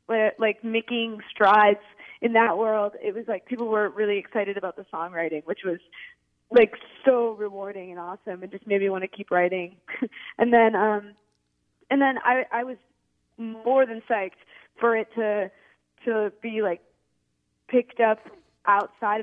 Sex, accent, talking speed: female, American, 160 wpm